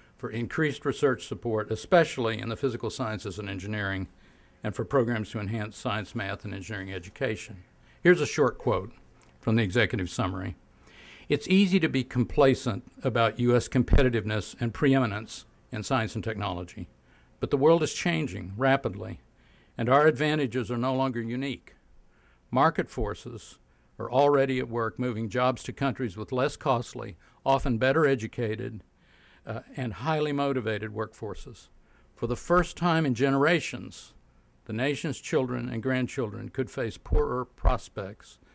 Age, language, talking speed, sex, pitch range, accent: 60-79, English, 145 wpm, male, 105-135 Hz, American